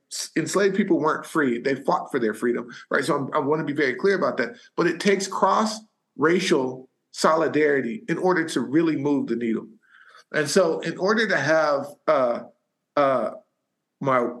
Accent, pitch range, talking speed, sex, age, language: American, 150-205 Hz, 170 wpm, male, 50-69, English